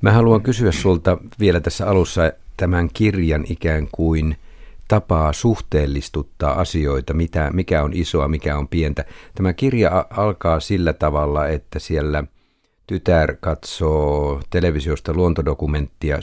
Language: Finnish